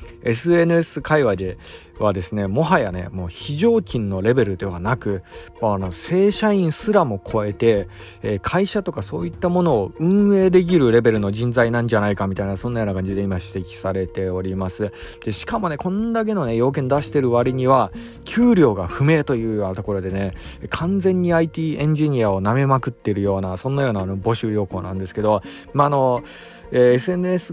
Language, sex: Japanese, male